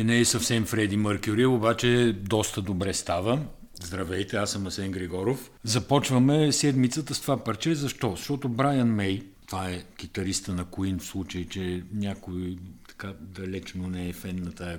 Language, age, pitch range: Bulgarian, 50-69, 95-120 Hz